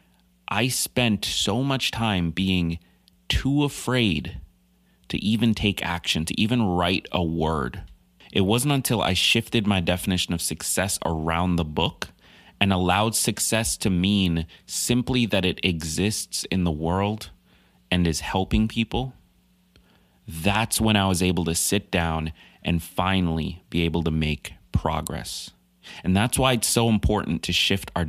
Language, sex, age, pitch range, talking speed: English, male, 30-49, 85-105 Hz, 145 wpm